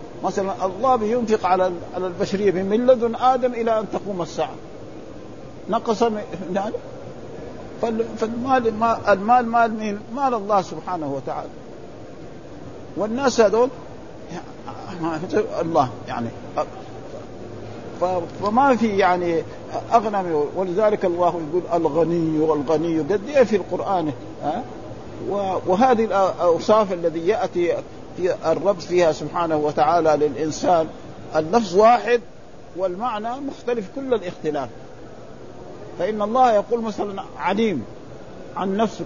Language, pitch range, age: Arabic, 170-235 Hz, 50-69